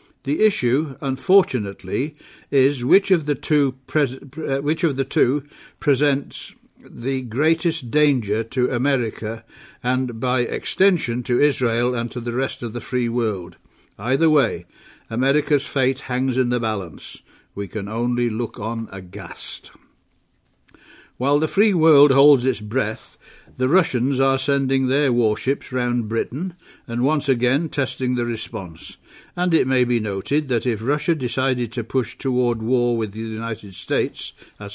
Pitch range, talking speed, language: 120-150 Hz, 150 wpm, English